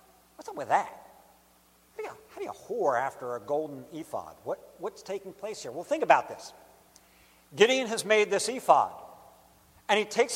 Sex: male